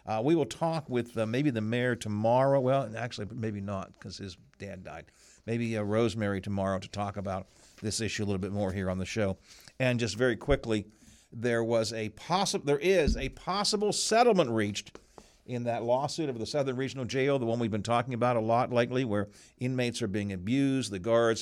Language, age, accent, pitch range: English, 50-69, American, 105-130 Hz